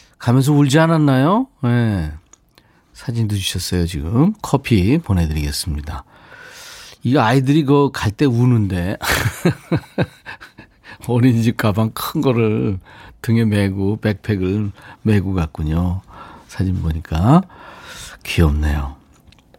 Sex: male